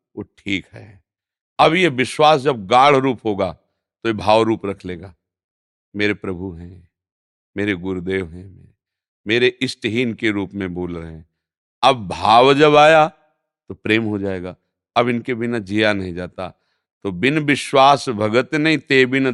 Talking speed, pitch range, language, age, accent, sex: 160 wpm, 95-135 Hz, Hindi, 50-69, native, male